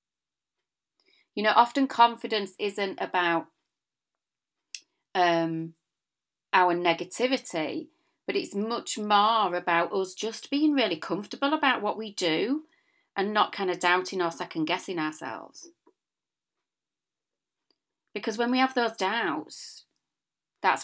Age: 40-59